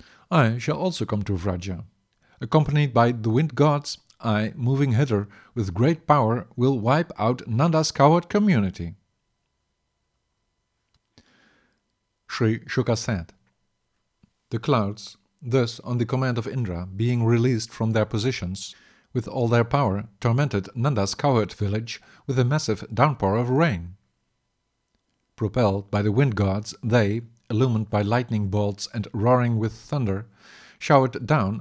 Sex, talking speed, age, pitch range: male, 130 wpm, 50-69, 105-130 Hz